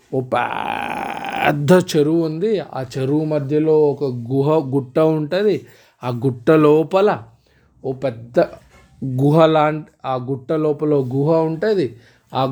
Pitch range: 135-165 Hz